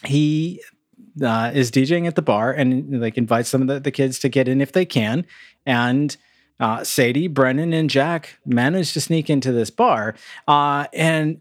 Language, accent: English, American